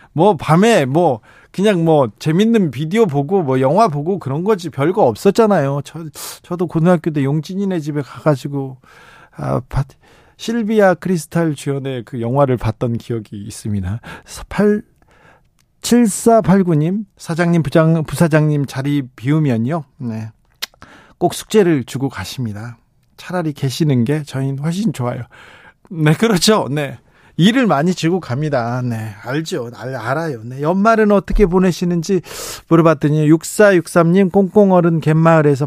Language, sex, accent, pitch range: Korean, male, native, 125-170 Hz